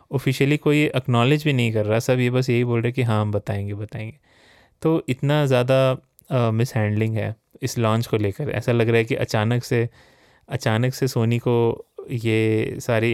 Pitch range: 110-125 Hz